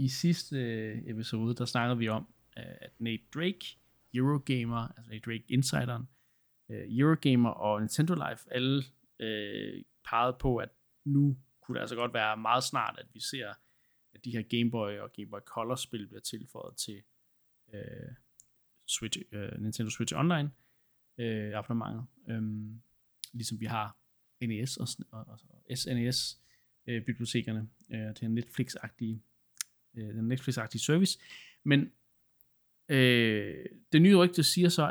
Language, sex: Danish, male